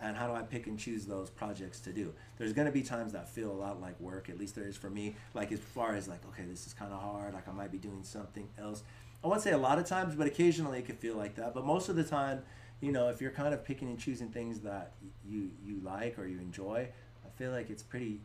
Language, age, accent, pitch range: English, 30-49, American, 100-115 Hz